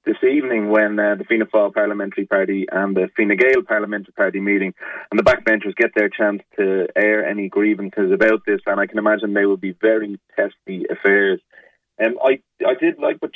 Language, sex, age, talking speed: English, male, 30-49, 200 wpm